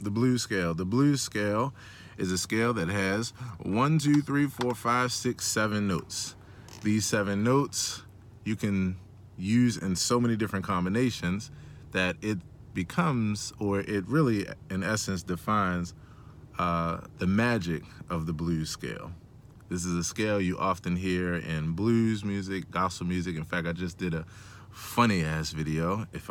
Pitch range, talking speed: 95-130 Hz, 155 wpm